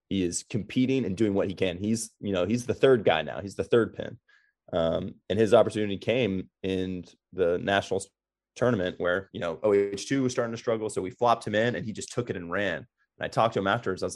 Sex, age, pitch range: male, 30-49, 100-125 Hz